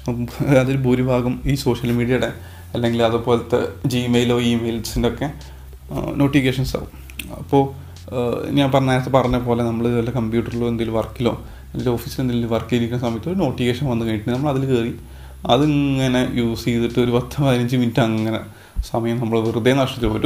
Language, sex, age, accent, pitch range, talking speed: Malayalam, male, 30-49, native, 115-145 Hz, 135 wpm